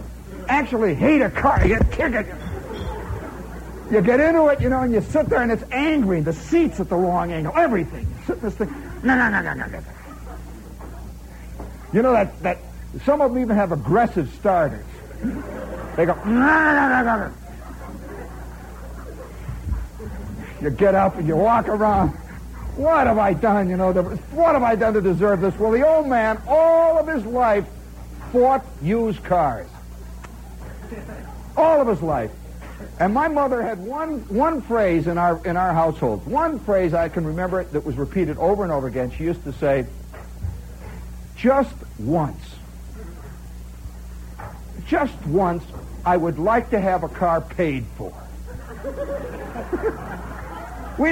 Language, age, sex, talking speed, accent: English, 60-79, male, 145 wpm, American